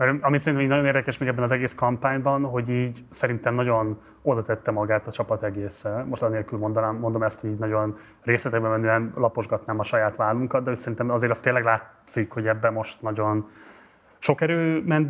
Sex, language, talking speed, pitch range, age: male, Hungarian, 185 wpm, 110-130 Hz, 20-39